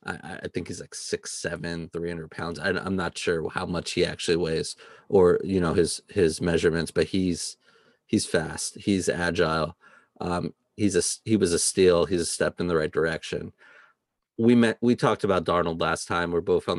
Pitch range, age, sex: 85-95 Hz, 30-49, male